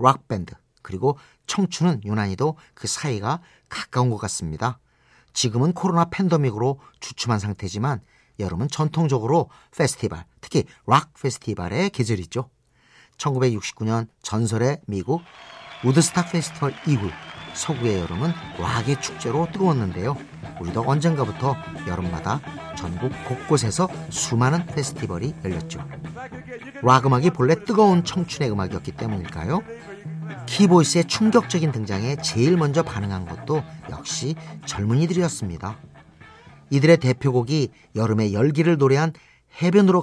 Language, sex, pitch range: Korean, male, 110-165 Hz